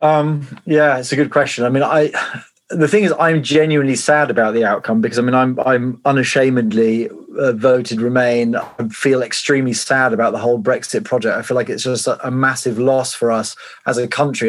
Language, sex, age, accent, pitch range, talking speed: English, male, 30-49, British, 115-135 Hz, 205 wpm